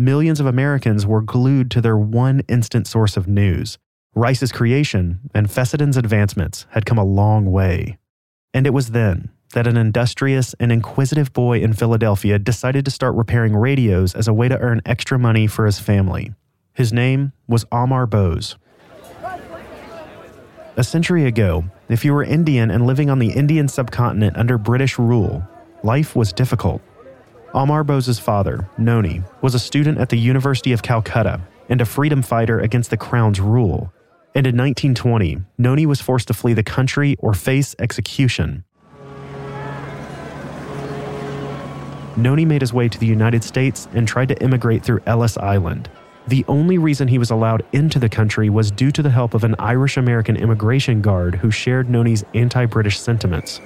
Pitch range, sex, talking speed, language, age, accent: 110-135 Hz, male, 160 wpm, English, 30-49, American